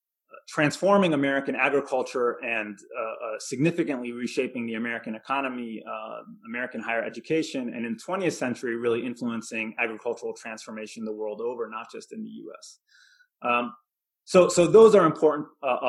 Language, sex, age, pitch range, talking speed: English, male, 30-49, 115-175 Hz, 145 wpm